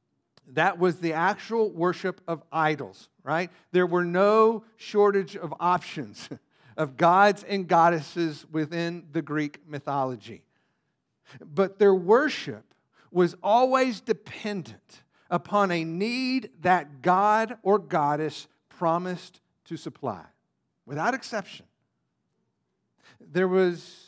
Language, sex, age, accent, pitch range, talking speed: English, male, 50-69, American, 160-210 Hz, 105 wpm